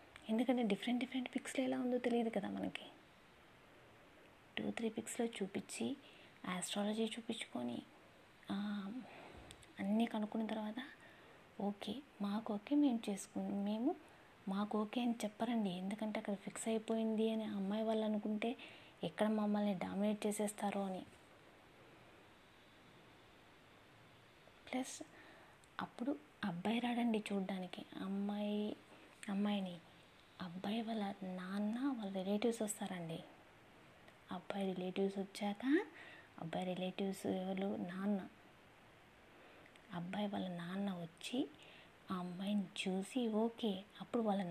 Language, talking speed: Telugu, 90 wpm